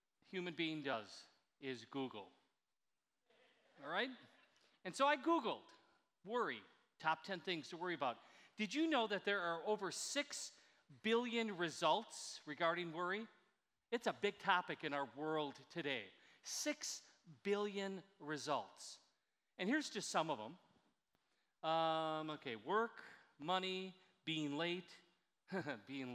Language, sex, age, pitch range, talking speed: English, male, 40-59, 150-205 Hz, 125 wpm